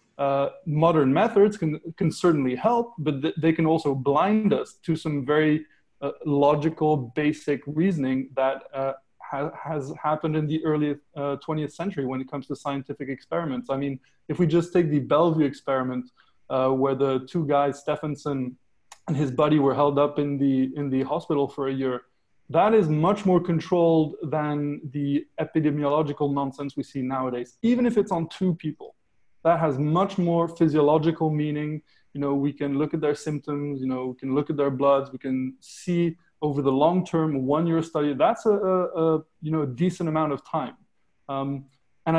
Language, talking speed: English, 185 wpm